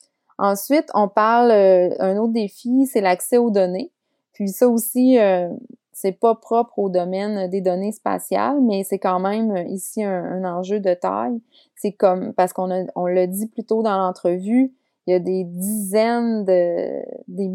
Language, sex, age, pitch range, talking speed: English, female, 30-49, 185-235 Hz, 180 wpm